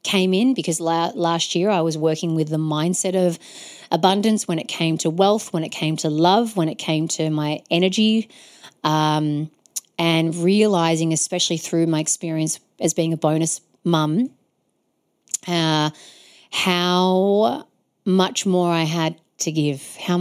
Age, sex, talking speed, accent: 30-49, female, 145 wpm, Australian